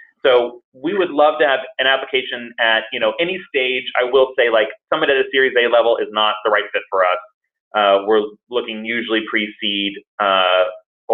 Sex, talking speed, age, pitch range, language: male, 195 wpm, 30-49, 105-135 Hz, English